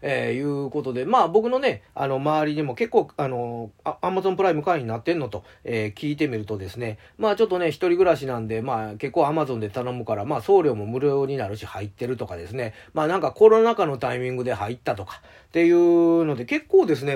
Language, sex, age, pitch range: Japanese, male, 40-59, 115-175 Hz